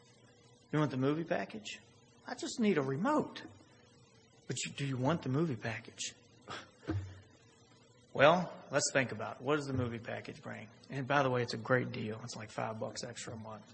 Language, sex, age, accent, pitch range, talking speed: English, male, 30-49, American, 120-150 Hz, 190 wpm